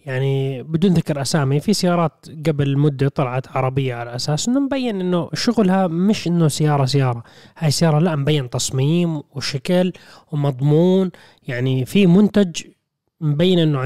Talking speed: 140 wpm